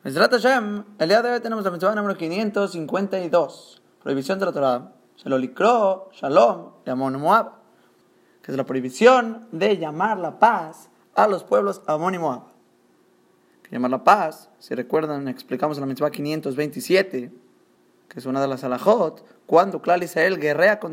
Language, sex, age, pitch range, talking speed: Spanish, male, 20-39, 145-215 Hz, 145 wpm